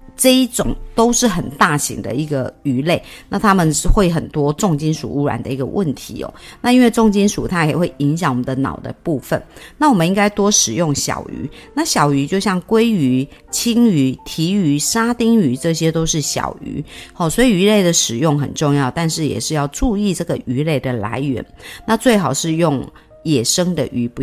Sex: female